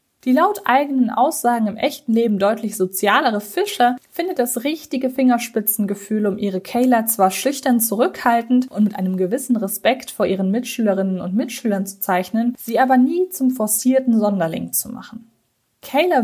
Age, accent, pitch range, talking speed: 20-39, German, 210-255 Hz, 150 wpm